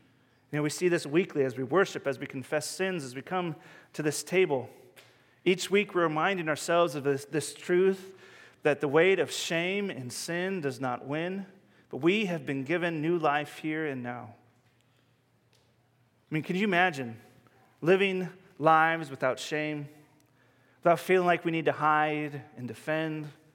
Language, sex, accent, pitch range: English, male, American, 130-175 Hz